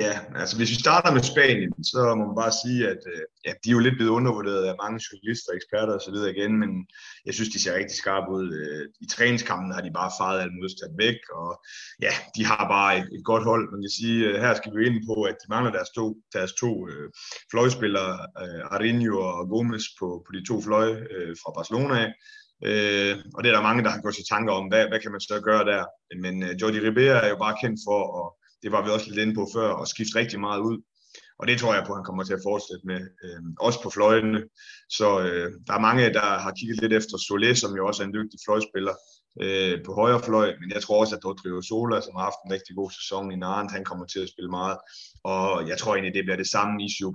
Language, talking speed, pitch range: Danish, 240 wpm, 95-115 Hz